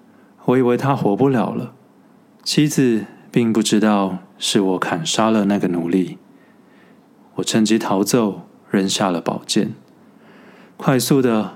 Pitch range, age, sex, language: 105-130 Hz, 20-39, male, Chinese